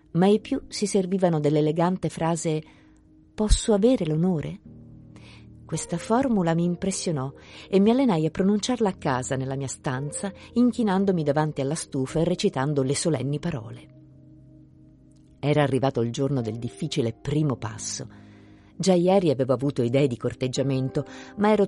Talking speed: 140 wpm